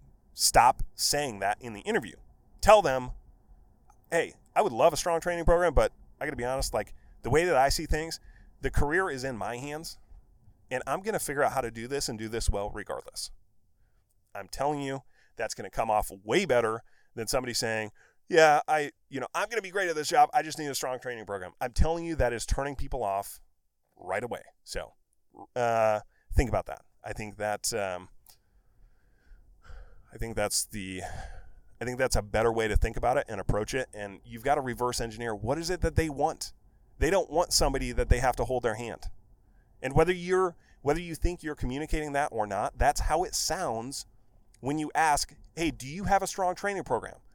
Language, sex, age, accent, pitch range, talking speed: English, male, 30-49, American, 105-150 Hz, 210 wpm